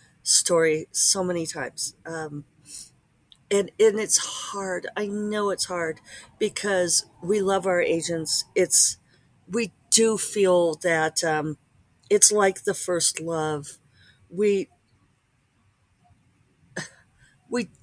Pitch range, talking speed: 150-210 Hz, 105 wpm